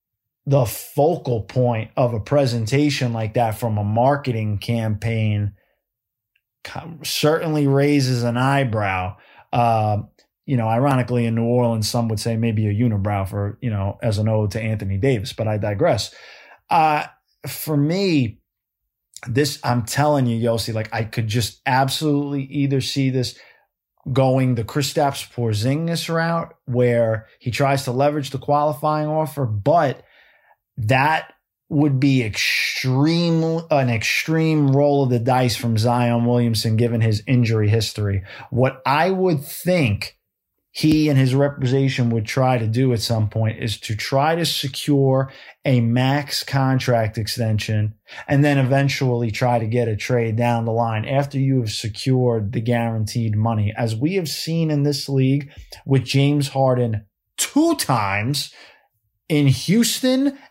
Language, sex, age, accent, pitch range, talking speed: English, male, 20-39, American, 115-140 Hz, 145 wpm